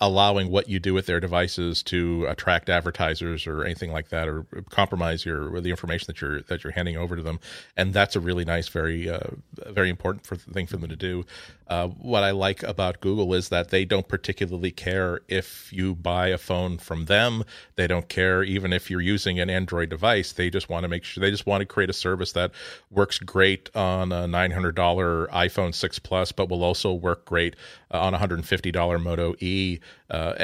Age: 40-59